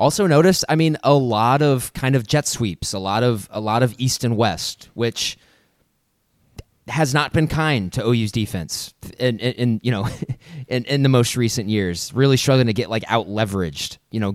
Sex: male